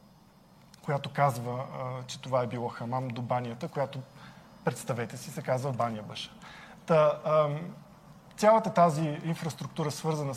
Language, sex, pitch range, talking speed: Bulgarian, male, 135-175 Hz, 120 wpm